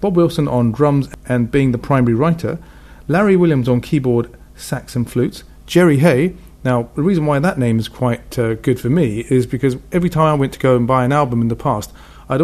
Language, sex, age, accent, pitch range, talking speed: English, male, 40-59, British, 120-155 Hz, 220 wpm